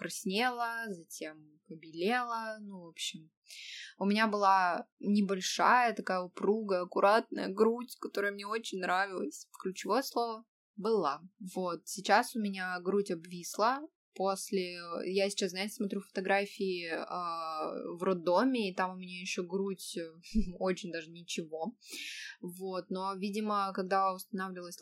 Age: 20-39